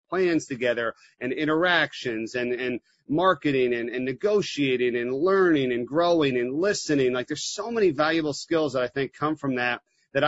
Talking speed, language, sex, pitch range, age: 170 wpm, English, male, 130-170 Hz, 40-59